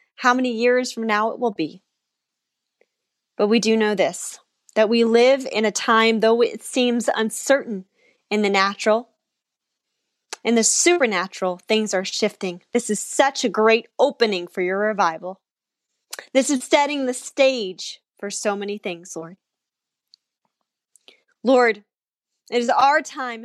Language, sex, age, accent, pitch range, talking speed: English, female, 10-29, American, 195-240 Hz, 145 wpm